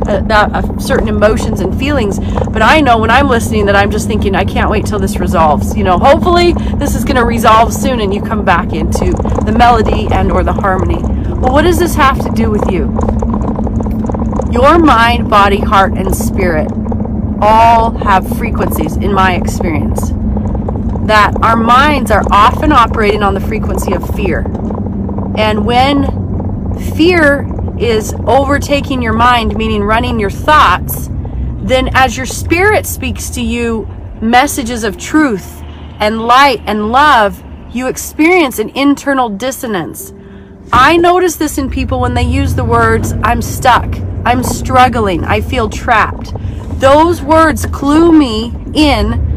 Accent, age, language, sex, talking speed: American, 30-49, English, female, 155 wpm